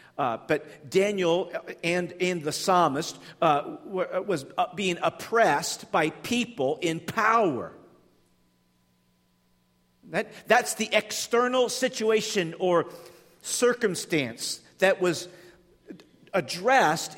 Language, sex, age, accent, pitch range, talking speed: English, male, 50-69, American, 165-215 Hz, 85 wpm